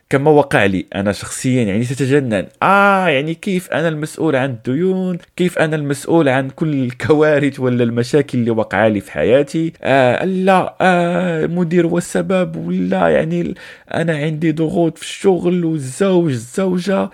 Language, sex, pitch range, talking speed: Arabic, male, 110-165 Hz, 140 wpm